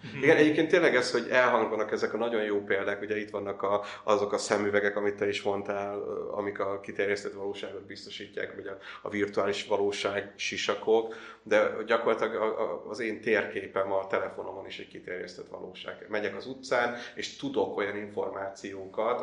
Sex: male